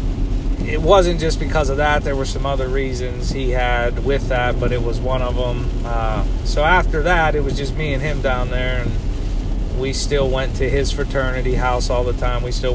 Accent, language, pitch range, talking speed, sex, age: American, English, 90-130 Hz, 215 wpm, male, 30-49